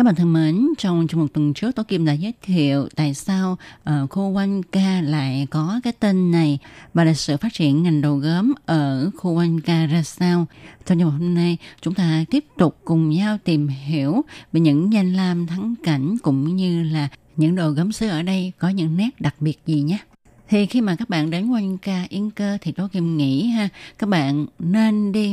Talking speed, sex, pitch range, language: 220 wpm, female, 155-195 Hz, Vietnamese